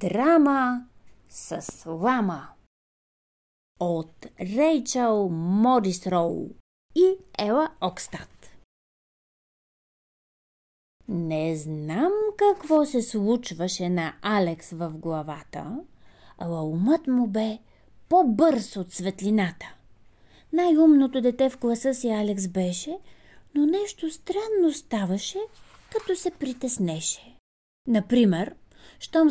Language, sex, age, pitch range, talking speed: Bulgarian, female, 30-49, 190-310 Hz, 85 wpm